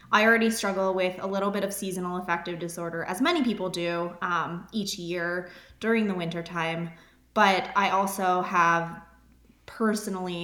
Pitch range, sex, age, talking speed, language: 175-205 Hz, female, 20-39, 155 wpm, English